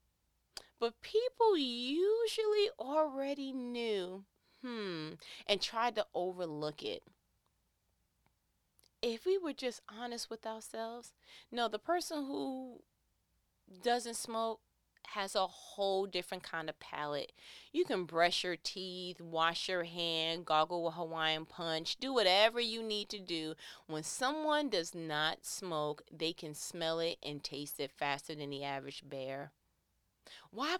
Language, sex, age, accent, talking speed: English, female, 30-49, American, 130 wpm